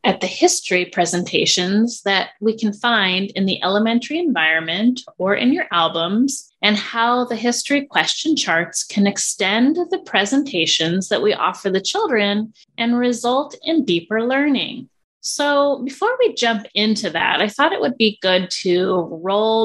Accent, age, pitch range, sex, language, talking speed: American, 30-49, 195-265 Hz, female, English, 155 wpm